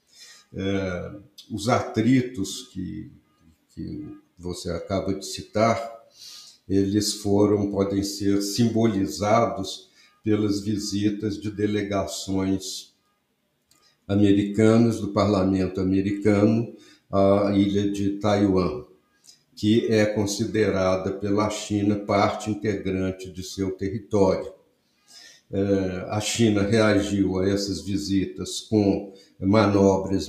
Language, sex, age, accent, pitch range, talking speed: Portuguese, male, 60-79, Brazilian, 95-110 Hz, 85 wpm